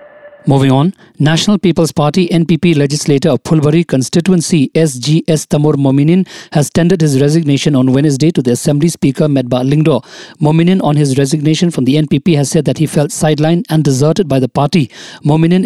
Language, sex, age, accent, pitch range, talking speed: English, male, 50-69, Indian, 145-170 Hz, 170 wpm